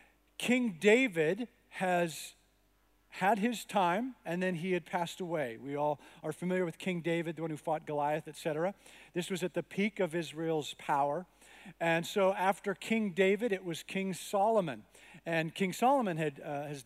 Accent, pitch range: American, 165-210 Hz